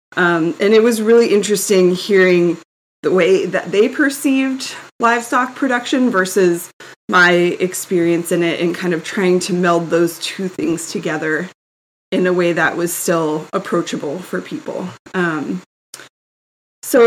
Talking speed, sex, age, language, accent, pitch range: 140 wpm, female, 20-39, English, American, 170-205 Hz